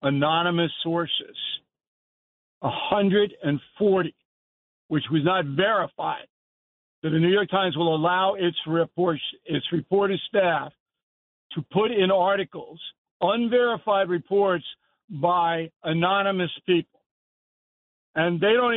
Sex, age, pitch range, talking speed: male, 60-79, 160-195 Hz, 110 wpm